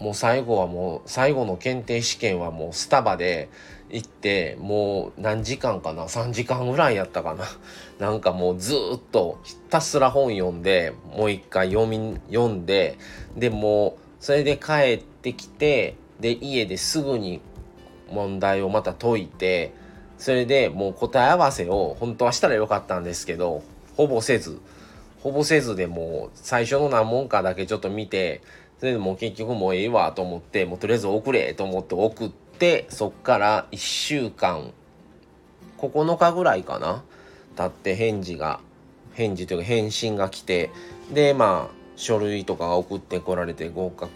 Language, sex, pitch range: Japanese, male, 90-120 Hz